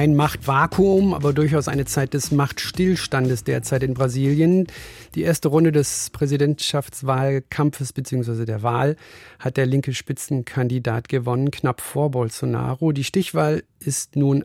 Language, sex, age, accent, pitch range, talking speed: German, male, 40-59, German, 130-155 Hz, 130 wpm